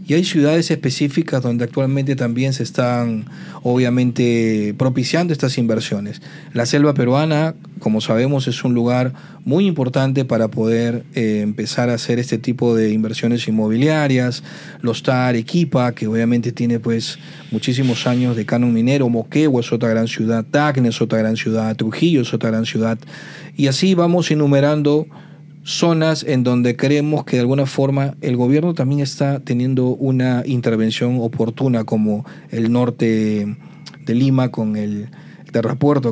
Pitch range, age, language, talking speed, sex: 115-145 Hz, 40-59, Spanish, 150 wpm, male